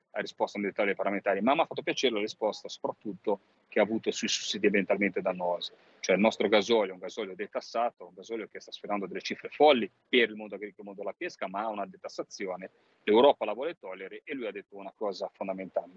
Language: Italian